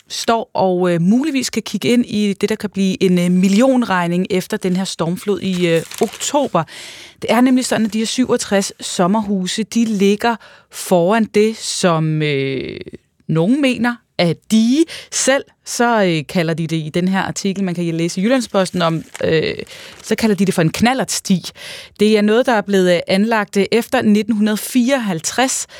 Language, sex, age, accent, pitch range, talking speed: Danish, female, 20-39, native, 175-230 Hz, 170 wpm